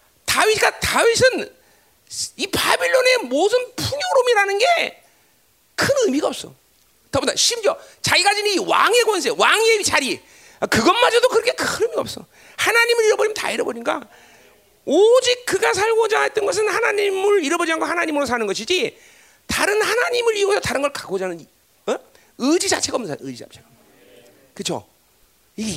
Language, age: Korean, 40-59